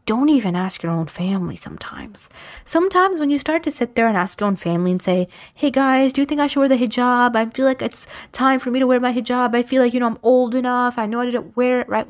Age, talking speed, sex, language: 20-39, 285 wpm, female, English